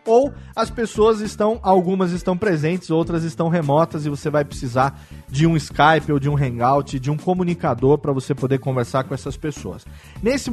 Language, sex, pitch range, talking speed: Portuguese, male, 145-190 Hz, 180 wpm